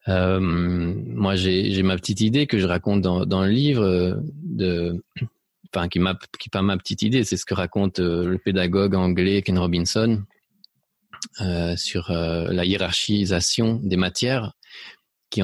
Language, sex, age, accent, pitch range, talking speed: French, male, 30-49, French, 90-110 Hz, 155 wpm